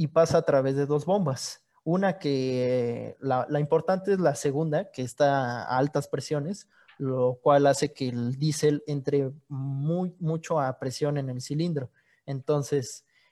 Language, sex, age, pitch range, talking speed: Spanish, male, 20-39, 135-165 Hz, 160 wpm